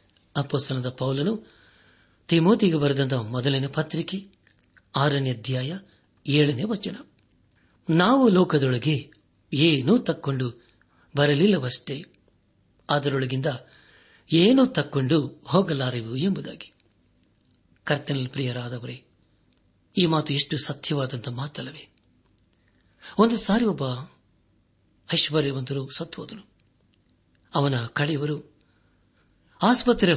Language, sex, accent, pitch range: Kannada, male, native, 120-165 Hz